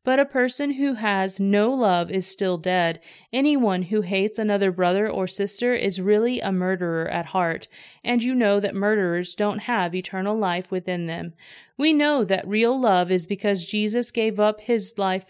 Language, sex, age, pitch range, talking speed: English, female, 30-49, 185-240 Hz, 180 wpm